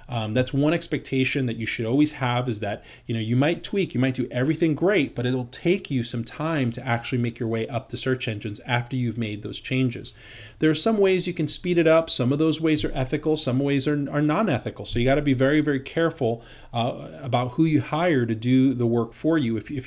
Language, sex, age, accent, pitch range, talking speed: English, male, 30-49, American, 115-135 Hz, 250 wpm